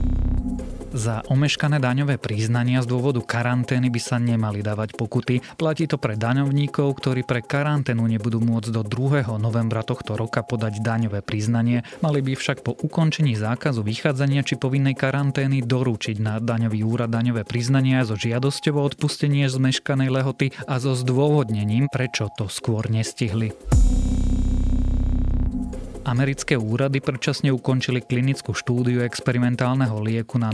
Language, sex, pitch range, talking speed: Slovak, male, 115-135 Hz, 130 wpm